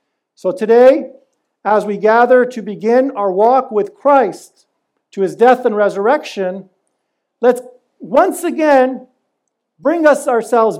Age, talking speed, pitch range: 50-69, 120 wpm, 210-255 Hz